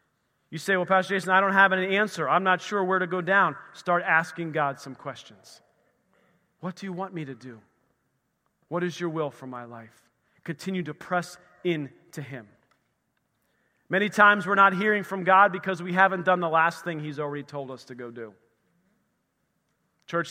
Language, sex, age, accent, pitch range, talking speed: English, male, 40-59, American, 140-195 Hz, 190 wpm